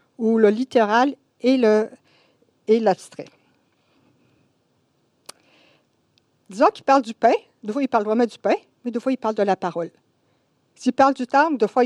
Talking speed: 165 wpm